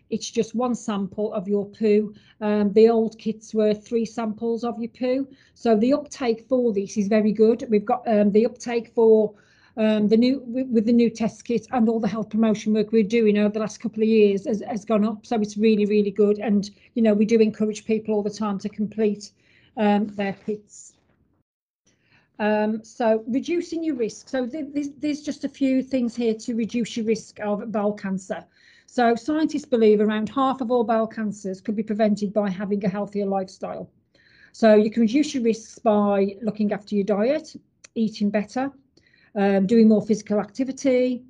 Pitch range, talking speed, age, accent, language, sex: 210-235 Hz, 195 wpm, 40-59, British, English, female